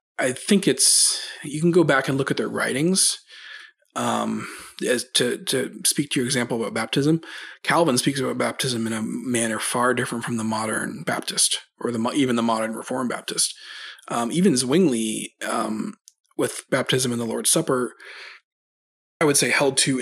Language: English